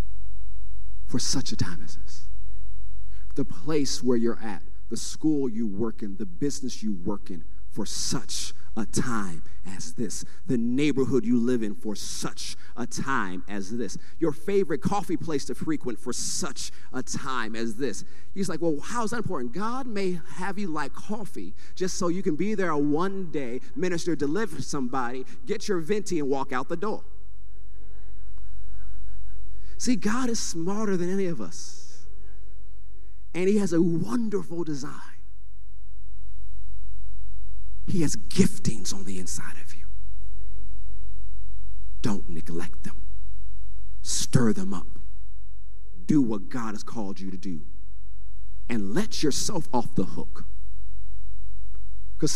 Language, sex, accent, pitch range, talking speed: English, male, American, 90-135 Hz, 140 wpm